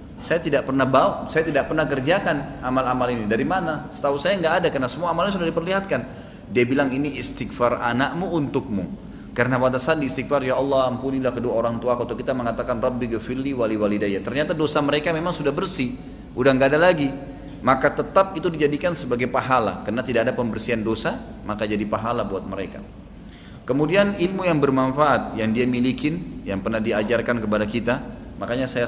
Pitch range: 115-150 Hz